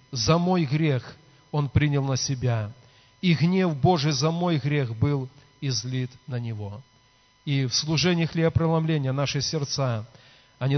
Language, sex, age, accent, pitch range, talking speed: Russian, male, 40-59, native, 125-150 Hz, 135 wpm